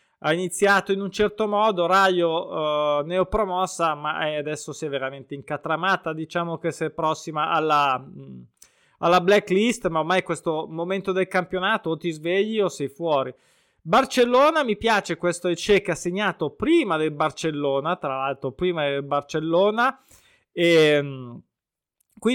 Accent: native